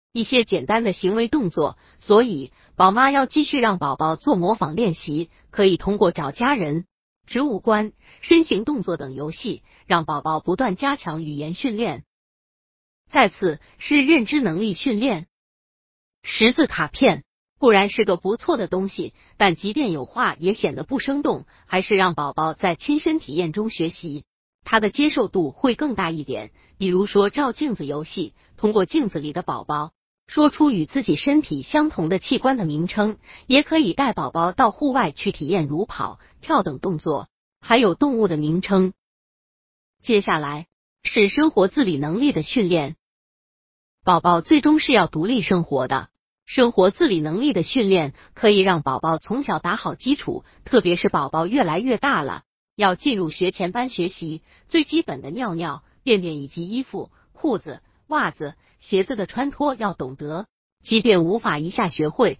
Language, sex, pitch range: Chinese, female, 170-265 Hz